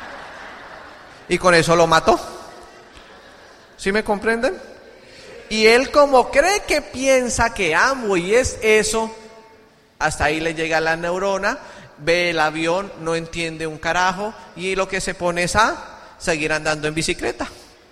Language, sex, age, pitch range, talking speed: Spanish, male, 30-49, 165-215 Hz, 145 wpm